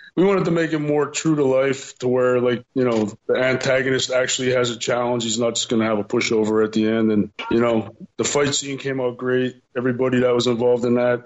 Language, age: English, 20-39